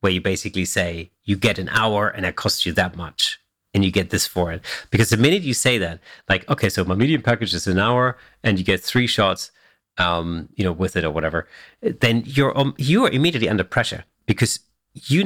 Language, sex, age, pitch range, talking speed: English, male, 40-59, 95-115 Hz, 225 wpm